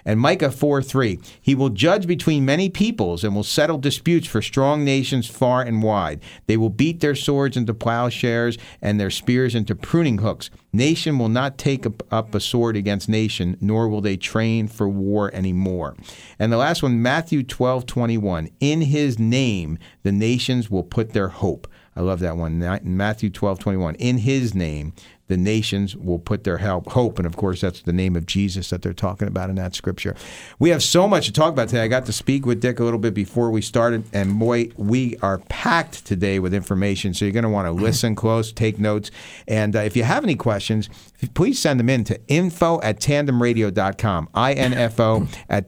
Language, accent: English, American